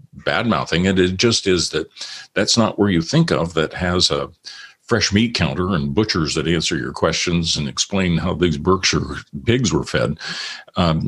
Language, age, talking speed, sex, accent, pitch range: English, 50-69, 180 wpm, male, American, 90-120 Hz